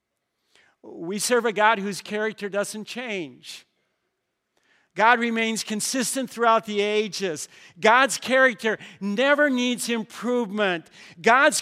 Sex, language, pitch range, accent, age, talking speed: male, English, 170-230 Hz, American, 50-69, 105 wpm